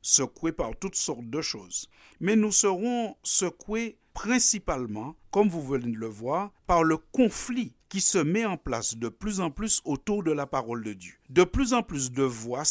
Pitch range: 125-195 Hz